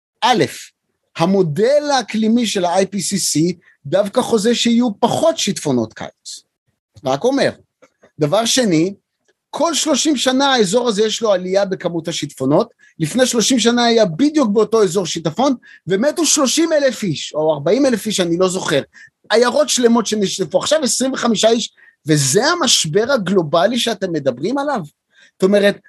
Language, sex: Hebrew, male